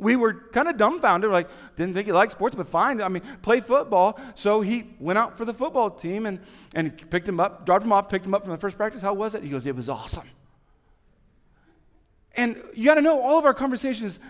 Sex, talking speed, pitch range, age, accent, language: male, 240 wpm, 180-270 Hz, 40-59, American, English